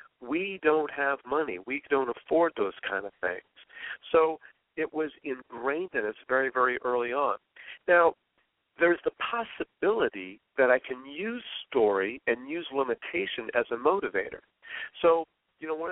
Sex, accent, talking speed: male, American, 150 wpm